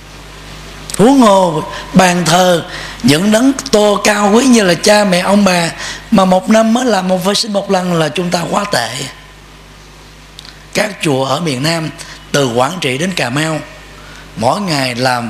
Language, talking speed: Vietnamese, 175 wpm